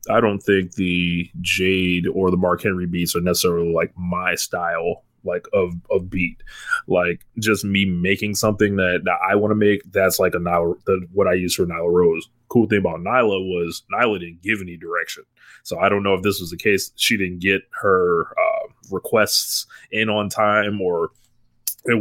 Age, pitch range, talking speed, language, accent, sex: 20-39, 90-115 Hz, 185 wpm, English, American, male